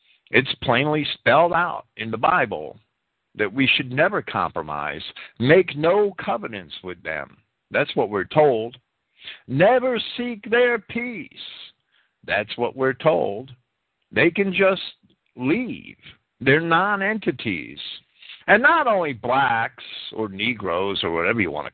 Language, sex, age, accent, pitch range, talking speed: English, male, 50-69, American, 130-200 Hz, 125 wpm